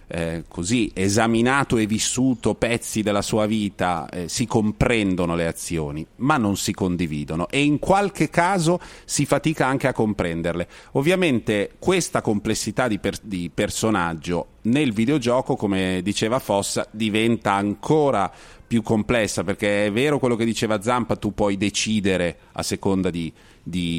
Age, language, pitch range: 40-59, Italian, 95-125 Hz